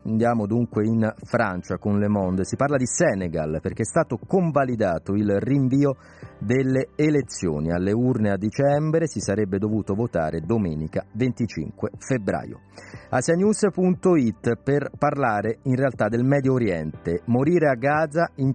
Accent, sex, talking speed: native, male, 135 wpm